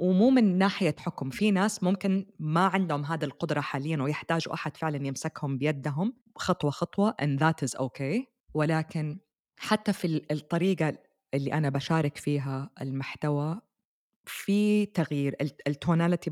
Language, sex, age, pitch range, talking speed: Arabic, female, 20-39, 140-185 Hz, 130 wpm